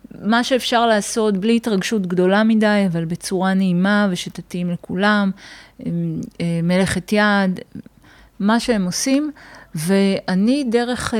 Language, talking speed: Hebrew, 100 wpm